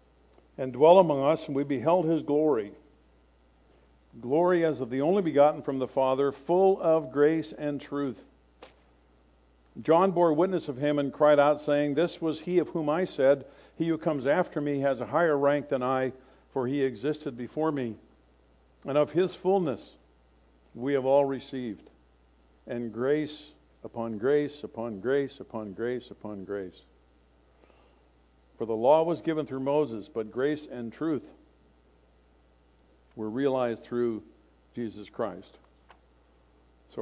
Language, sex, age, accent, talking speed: English, male, 60-79, American, 145 wpm